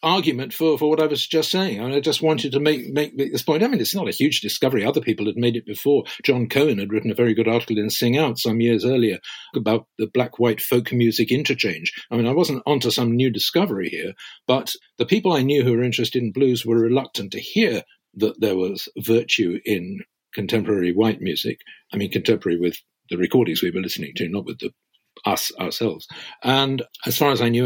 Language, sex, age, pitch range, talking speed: English, male, 50-69, 120-155 Hz, 230 wpm